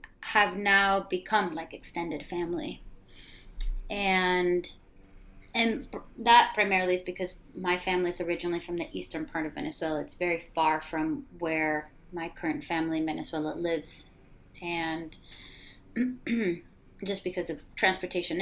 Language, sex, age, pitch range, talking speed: English, female, 30-49, 155-200 Hz, 120 wpm